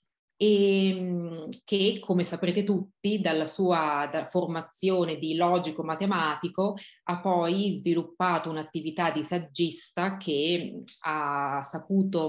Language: Italian